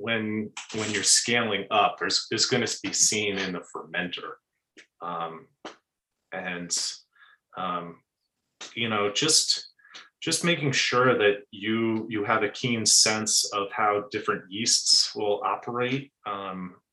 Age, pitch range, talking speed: 30-49, 100-120 Hz, 130 wpm